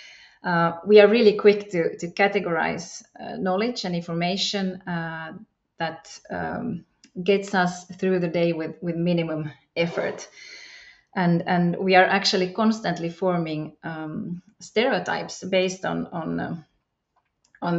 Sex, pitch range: female, 170-205 Hz